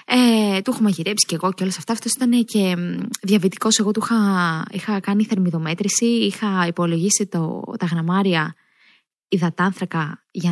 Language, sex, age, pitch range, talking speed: Greek, female, 20-39, 195-305 Hz, 155 wpm